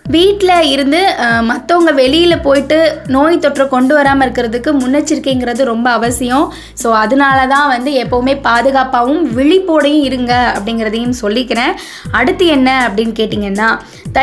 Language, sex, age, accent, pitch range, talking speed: Tamil, female, 20-39, native, 235-295 Hz, 115 wpm